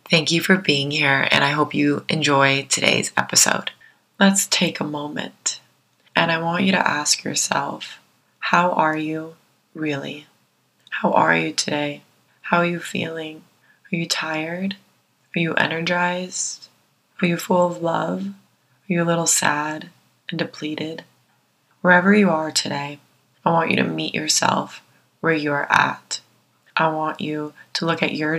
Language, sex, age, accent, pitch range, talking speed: English, female, 20-39, American, 145-165 Hz, 155 wpm